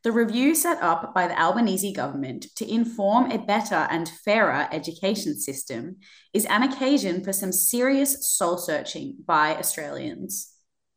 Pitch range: 170-235 Hz